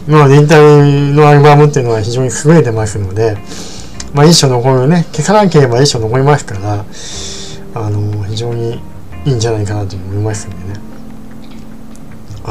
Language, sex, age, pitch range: Japanese, male, 20-39, 115-150 Hz